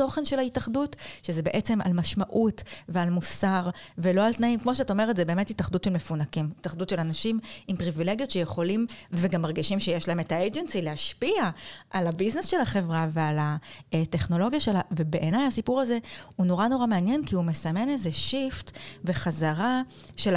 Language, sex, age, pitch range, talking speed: Hebrew, female, 30-49, 170-230 Hz, 155 wpm